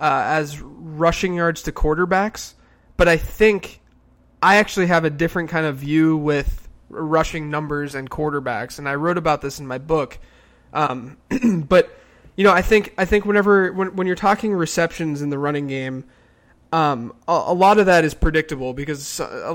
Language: English